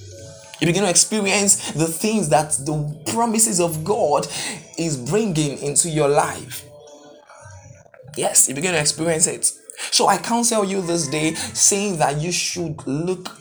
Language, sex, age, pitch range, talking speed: English, male, 20-39, 150-190 Hz, 150 wpm